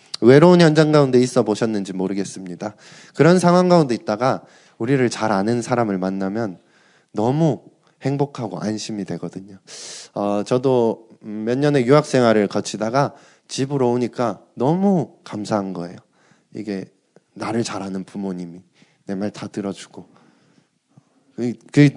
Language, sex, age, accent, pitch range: Korean, male, 20-39, native, 100-135 Hz